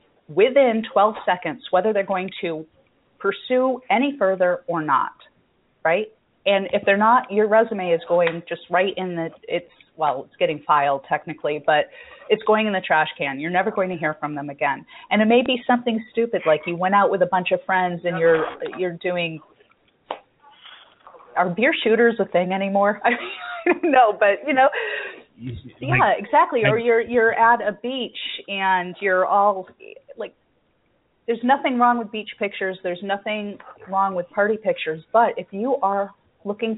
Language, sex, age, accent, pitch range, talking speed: English, female, 30-49, American, 175-225 Hz, 175 wpm